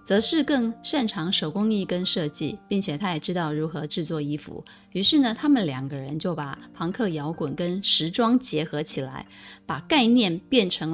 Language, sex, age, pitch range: Chinese, female, 20-39, 155-210 Hz